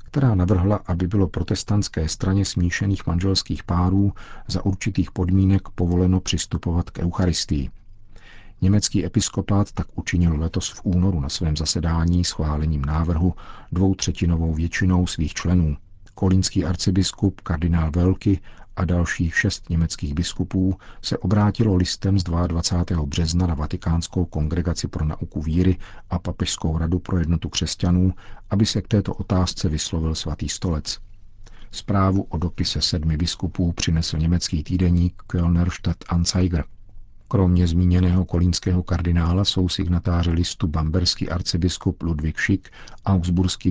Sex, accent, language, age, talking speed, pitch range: male, native, Czech, 50-69, 125 wpm, 85-95 Hz